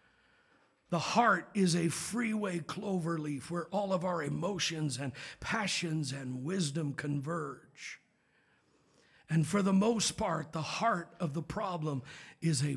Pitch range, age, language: 155-200 Hz, 50-69, English